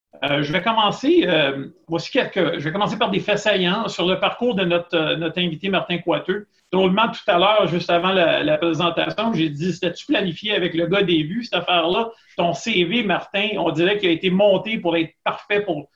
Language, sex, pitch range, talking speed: French, male, 170-205 Hz, 205 wpm